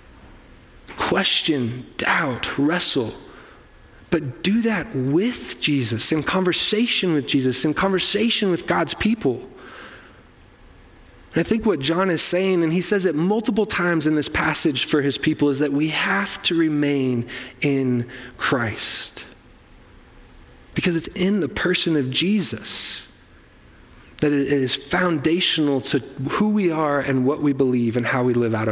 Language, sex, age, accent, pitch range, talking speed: English, male, 30-49, American, 140-180 Hz, 140 wpm